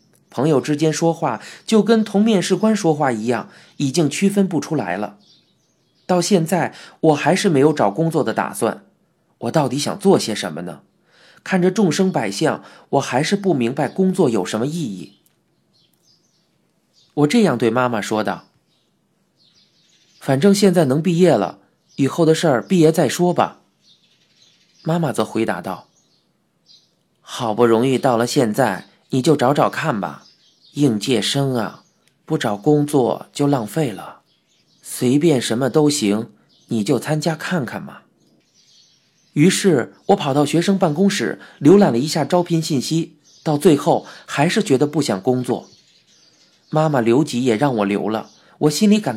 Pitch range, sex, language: 120-180 Hz, male, Chinese